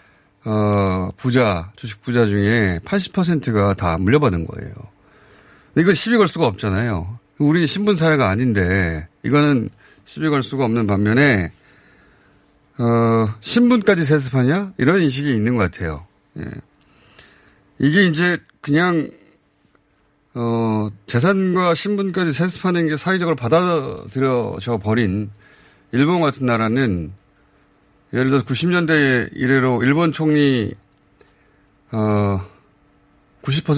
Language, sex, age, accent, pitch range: Korean, male, 30-49, native, 105-150 Hz